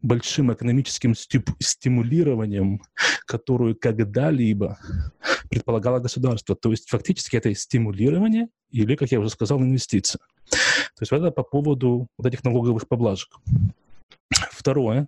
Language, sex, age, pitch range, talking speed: English, male, 30-49, 110-135 Hz, 115 wpm